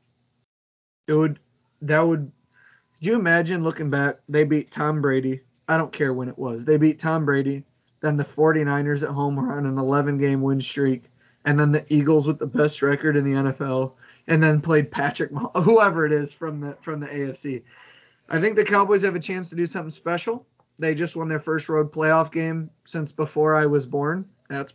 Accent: American